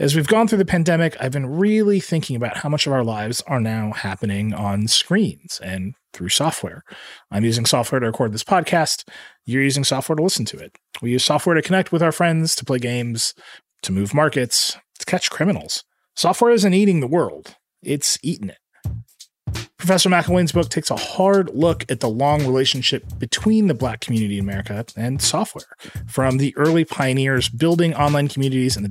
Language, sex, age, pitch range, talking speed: English, male, 30-49, 115-160 Hz, 190 wpm